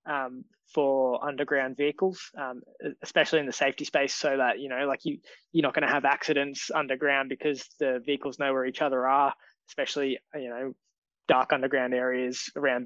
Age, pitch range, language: 20-39, 135-155 Hz, English